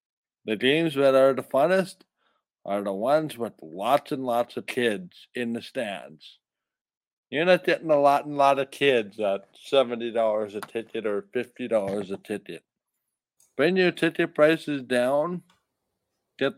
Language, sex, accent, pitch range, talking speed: English, male, American, 120-145 Hz, 150 wpm